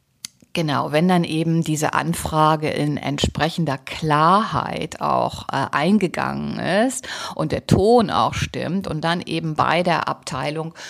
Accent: German